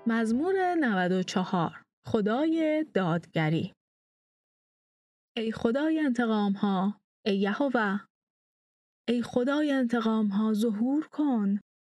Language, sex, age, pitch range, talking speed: Persian, female, 30-49, 200-265 Hz, 80 wpm